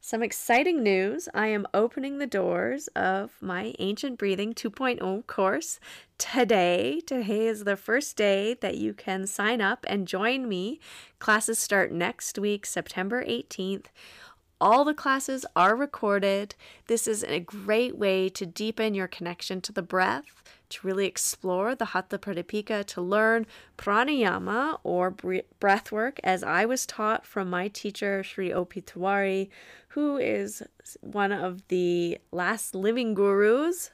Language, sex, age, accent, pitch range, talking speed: English, female, 30-49, American, 185-230 Hz, 140 wpm